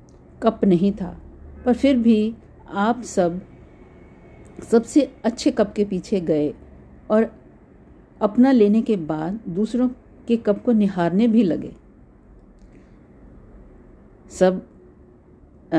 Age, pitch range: 50-69, 170-220 Hz